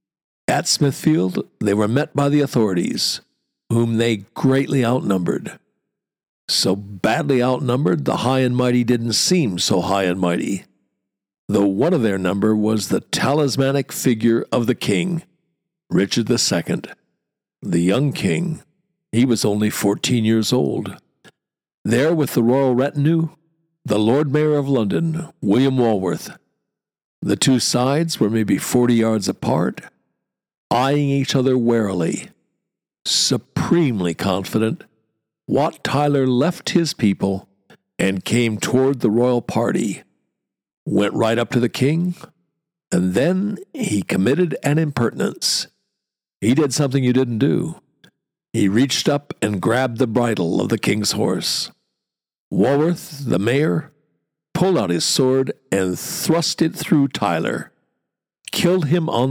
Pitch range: 110-150 Hz